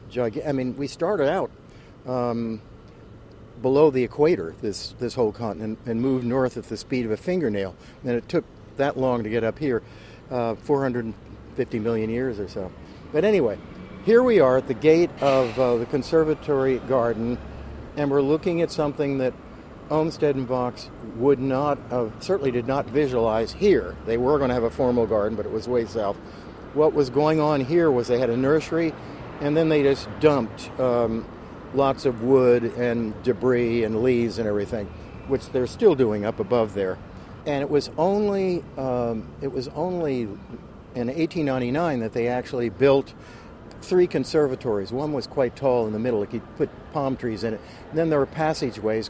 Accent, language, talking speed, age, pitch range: American, English, 180 wpm, 50-69, 115-140 Hz